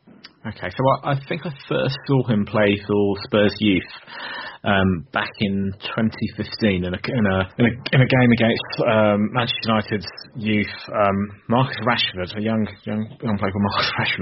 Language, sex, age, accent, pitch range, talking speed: English, male, 30-49, British, 100-125 Hz, 175 wpm